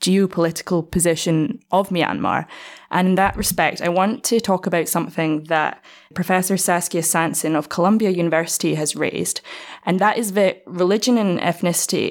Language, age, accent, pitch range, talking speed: English, 10-29, British, 165-205 Hz, 150 wpm